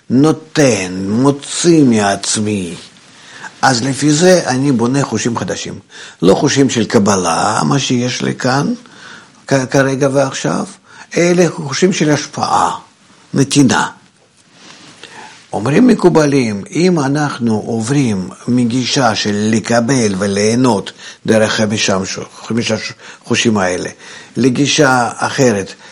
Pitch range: 110-140 Hz